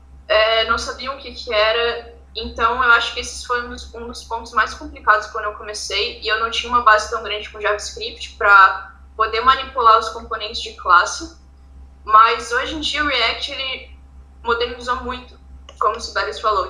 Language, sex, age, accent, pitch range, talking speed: Portuguese, female, 10-29, Brazilian, 210-260 Hz, 185 wpm